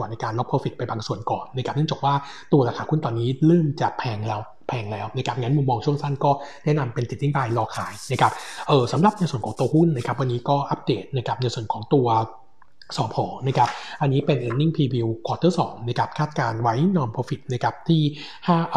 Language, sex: Thai, male